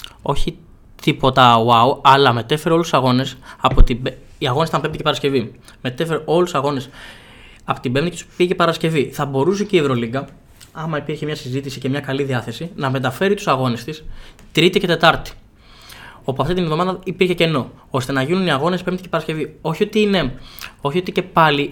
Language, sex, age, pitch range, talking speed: Greek, male, 20-39, 130-180 Hz, 190 wpm